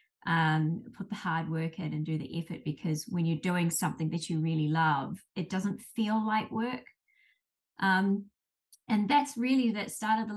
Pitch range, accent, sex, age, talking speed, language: 170-215 Hz, Australian, female, 20-39, 185 wpm, English